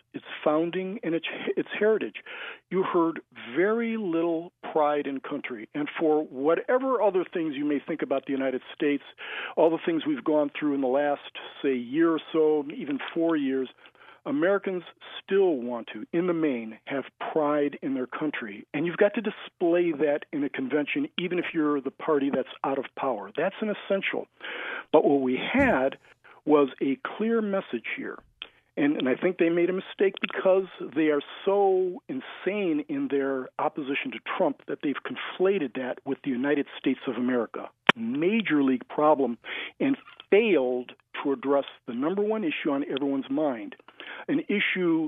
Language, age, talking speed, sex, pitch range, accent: English, 50-69, 170 wpm, male, 140-230 Hz, American